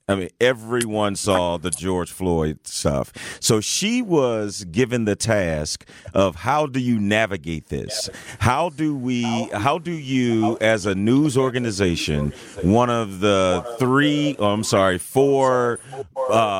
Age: 40-59